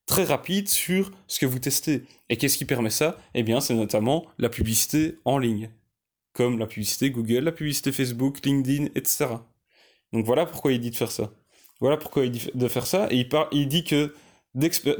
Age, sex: 20-39, male